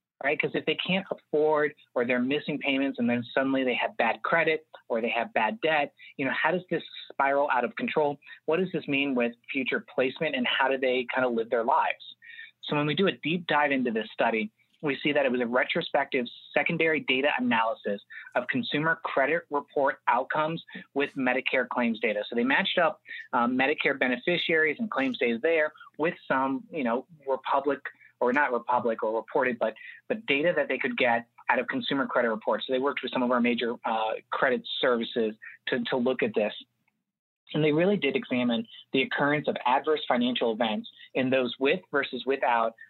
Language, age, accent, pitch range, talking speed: Italian, 30-49, American, 125-155 Hz, 200 wpm